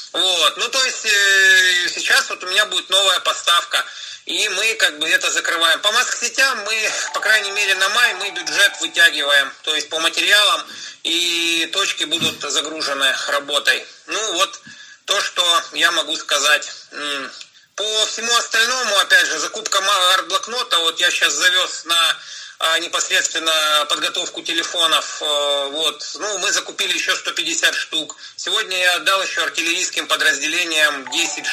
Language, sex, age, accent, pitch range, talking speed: Russian, male, 30-49, native, 155-195 Hz, 145 wpm